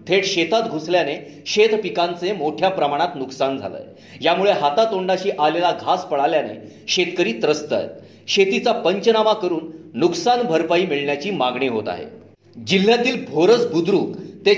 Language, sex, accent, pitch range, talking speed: Marathi, male, native, 160-215 Hz, 45 wpm